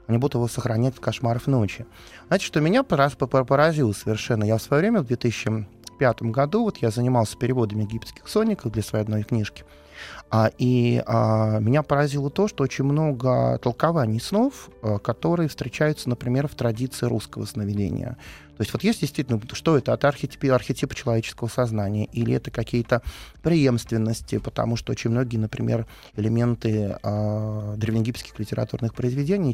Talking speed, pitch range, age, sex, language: 145 wpm, 110-135 Hz, 20-39, male, Russian